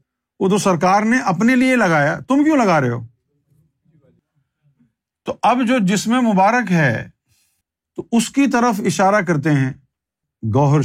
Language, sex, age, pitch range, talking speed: Urdu, male, 50-69, 145-230 Hz, 140 wpm